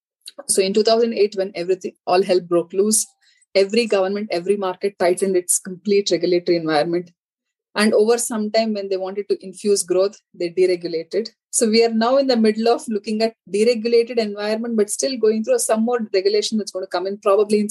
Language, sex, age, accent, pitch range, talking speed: English, female, 30-49, Indian, 185-225 Hz, 190 wpm